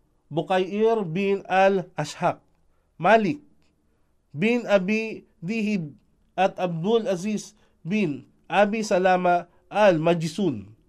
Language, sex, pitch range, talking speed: Filipino, male, 160-200 Hz, 75 wpm